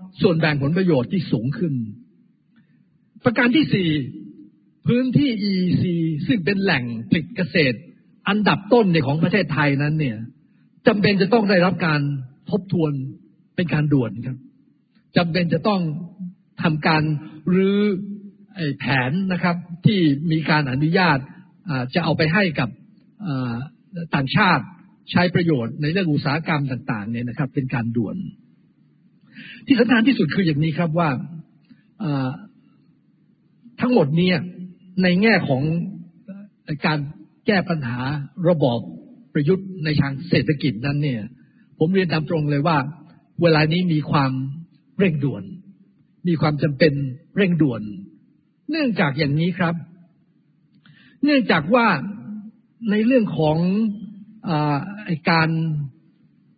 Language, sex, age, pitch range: Thai, male, 60-79, 150-200 Hz